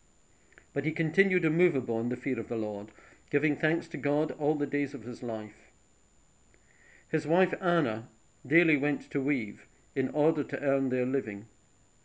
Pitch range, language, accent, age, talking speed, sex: 115-150 Hz, English, British, 50-69, 165 wpm, male